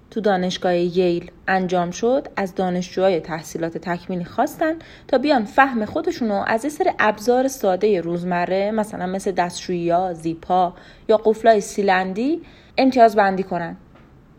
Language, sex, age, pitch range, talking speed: Persian, female, 30-49, 180-250 Hz, 125 wpm